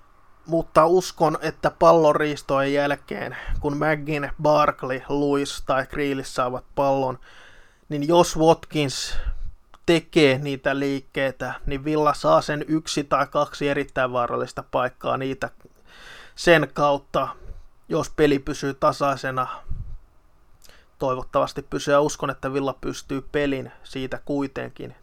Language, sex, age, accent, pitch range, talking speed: Finnish, male, 20-39, native, 135-150 Hz, 115 wpm